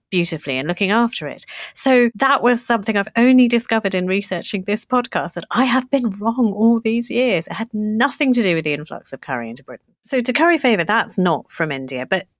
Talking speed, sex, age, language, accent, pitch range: 220 wpm, female, 30-49, English, British, 170-240 Hz